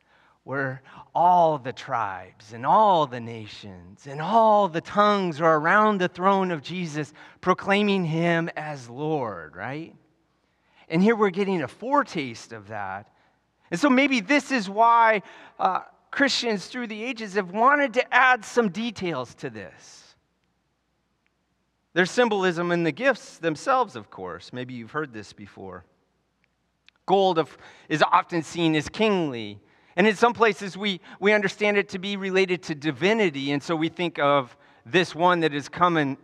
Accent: American